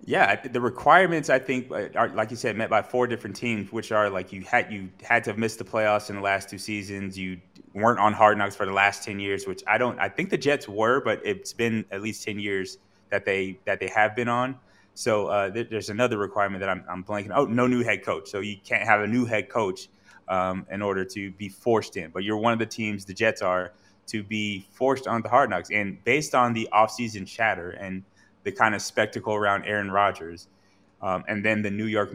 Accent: American